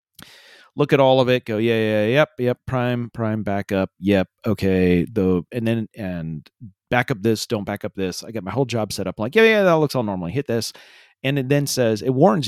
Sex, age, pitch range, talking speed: male, 40-59, 100-140 Hz, 235 wpm